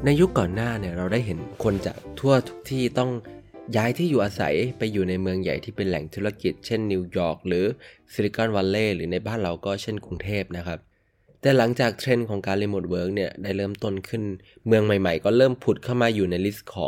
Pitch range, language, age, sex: 90-115 Hz, Thai, 20-39, male